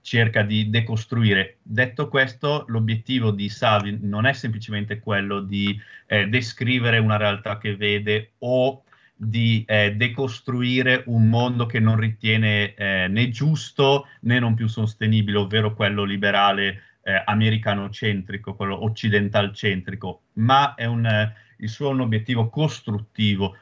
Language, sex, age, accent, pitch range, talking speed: Italian, male, 30-49, native, 105-125 Hz, 125 wpm